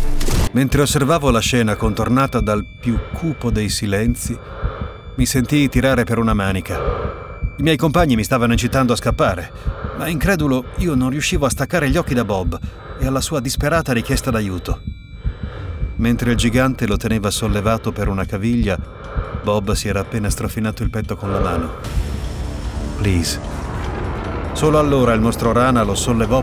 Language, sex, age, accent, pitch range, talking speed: Italian, male, 30-49, native, 95-120 Hz, 155 wpm